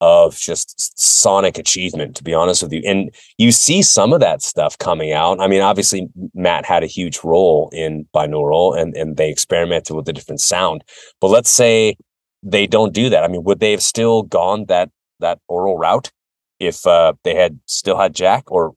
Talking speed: 200 wpm